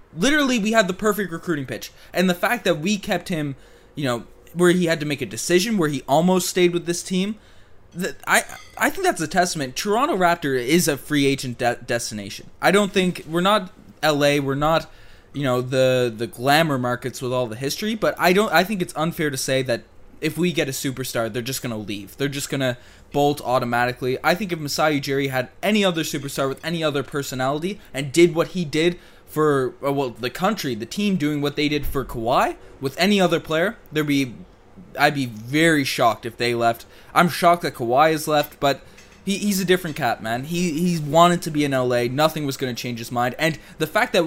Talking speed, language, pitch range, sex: 220 wpm, English, 130-175 Hz, male